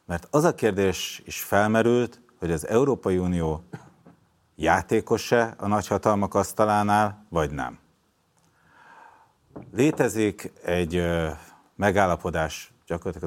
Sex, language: male, Hungarian